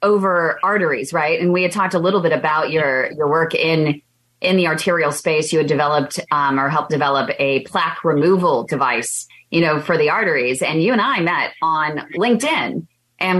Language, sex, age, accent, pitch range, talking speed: English, female, 30-49, American, 145-185 Hz, 195 wpm